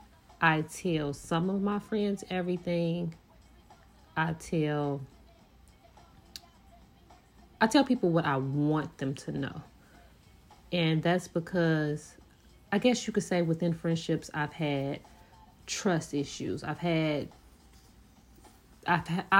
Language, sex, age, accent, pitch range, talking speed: English, female, 30-49, American, 145-170 Hz, 110 wpm